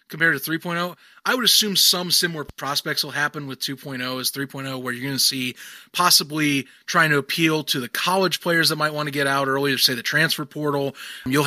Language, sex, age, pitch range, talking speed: English, male, 20-39, 135-170 Hz, 210 wpm